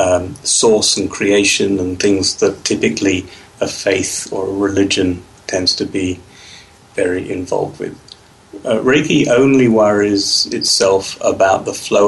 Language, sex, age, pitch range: English, male, 30-49, 95-110 Hz